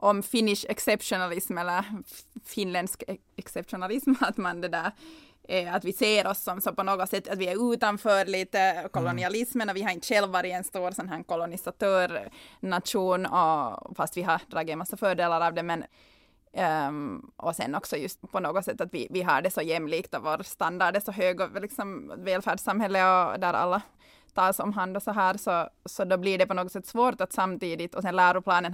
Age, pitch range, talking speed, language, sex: 20-39, 180-210 Hz, 190 wpm, Swedish, female